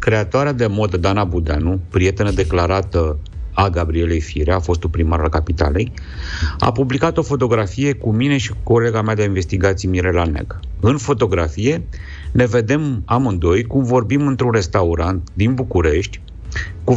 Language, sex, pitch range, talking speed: Romanian, male, 85-120 Hz, 145 wpm